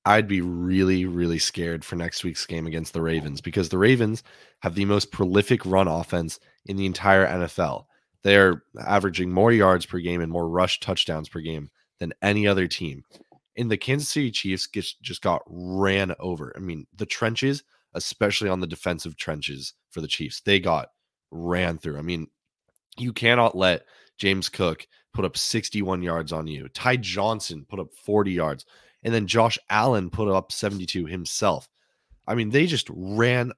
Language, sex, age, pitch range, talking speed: English, male, 20-39, 85-105 Hz, 175 wpm